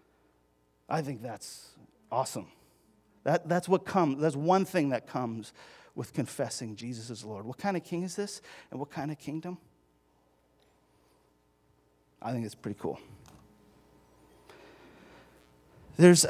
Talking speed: 130 wpm